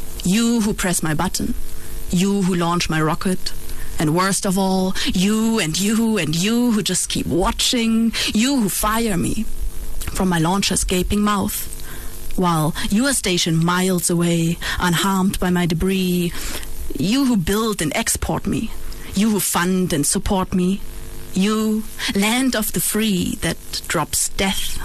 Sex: female